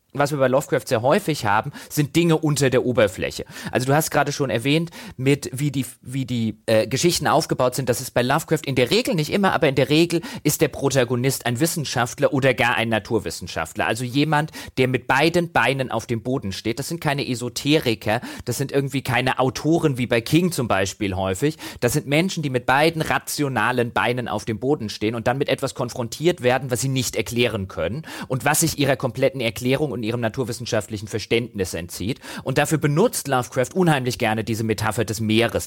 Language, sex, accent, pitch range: German, male, German, 110-145 Hz